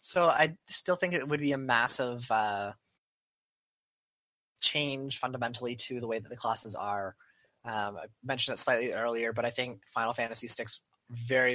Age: 20-39